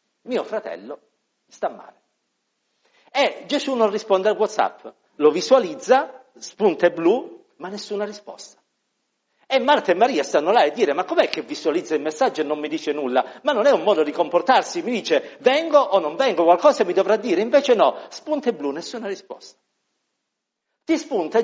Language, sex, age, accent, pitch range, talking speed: Italian, male, 50-69, native, 200-290 Hz, 170 wpm